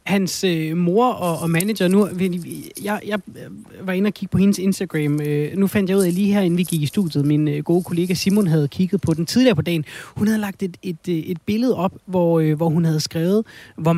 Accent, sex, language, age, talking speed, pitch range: native, male, Danish, 30-49, 240 wpm, 145-180 Hz